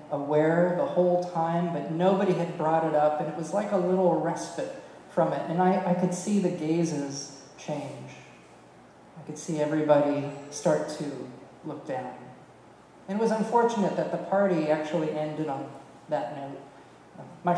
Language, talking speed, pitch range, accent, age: English, 165 wpm, 150-180 Hz, American, 40-59